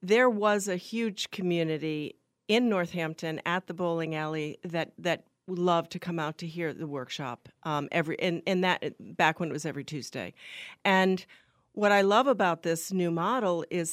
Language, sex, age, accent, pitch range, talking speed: English, female, 40-59, American, 160-210 Hz, 185 wpm